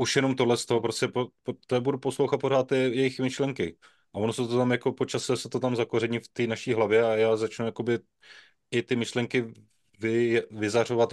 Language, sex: Czech, male